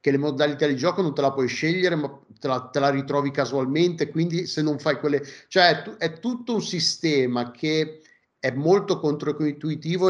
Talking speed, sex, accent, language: 195 wpm, male, native, Italian